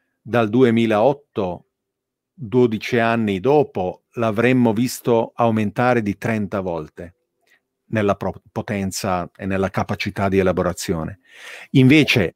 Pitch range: 105-130 Hz